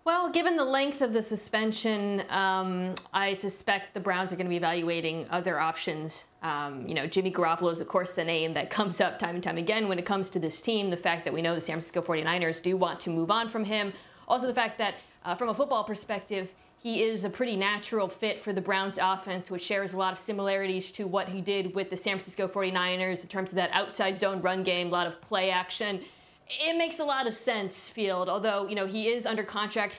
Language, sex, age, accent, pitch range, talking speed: English, female, 40-59, American, 185-220 Hz, 240 wpm